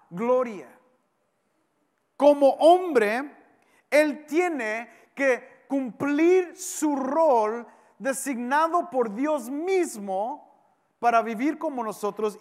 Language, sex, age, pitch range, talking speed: English, male, 40-59, 230-290 Hz, 80 wpm